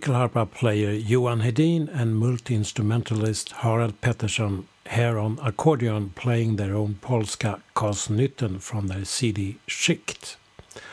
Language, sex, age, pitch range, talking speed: English, male, 60-79, 110-130 Hz, 105 wpm